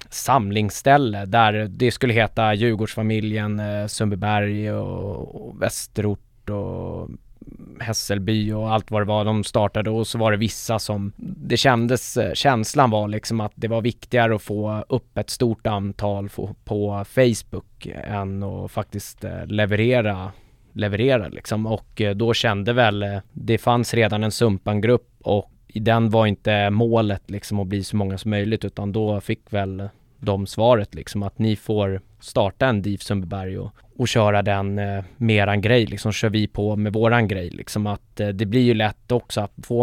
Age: 20-39